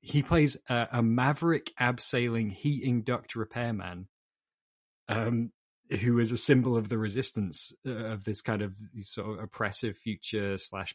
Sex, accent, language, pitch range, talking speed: male, British, English, 105-130 Hz, 150 wpm